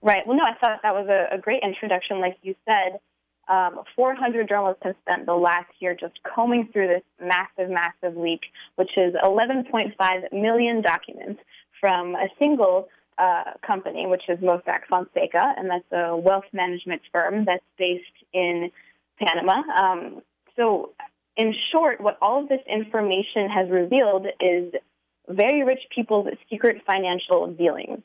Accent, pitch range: American, 180-225 Hz